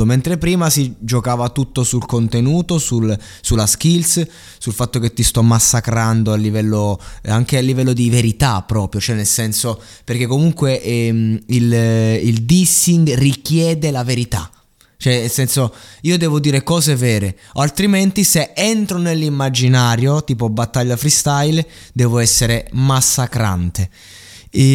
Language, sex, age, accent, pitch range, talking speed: Italian, male, 20-39, native, 110-145 Hz, 135 wpm